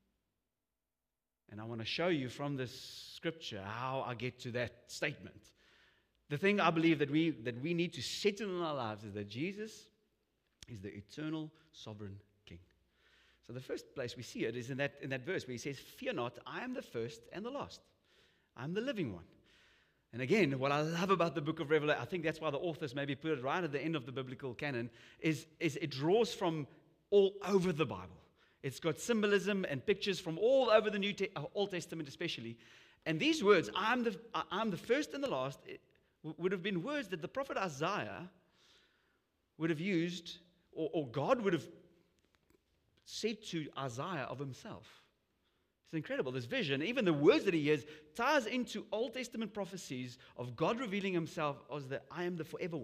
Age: 30-49